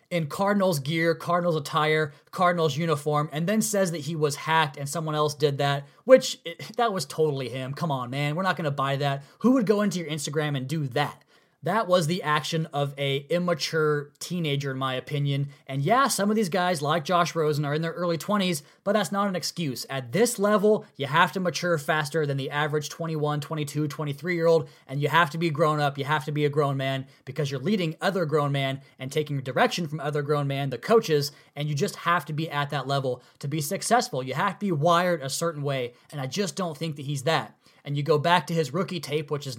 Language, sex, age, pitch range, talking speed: English, male, 20-39, 145-180 Hz, 230 wpm